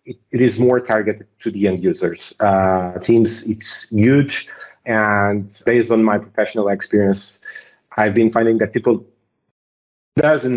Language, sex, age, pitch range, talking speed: English, male, 30-49, 100-120 Hz, 135 wpm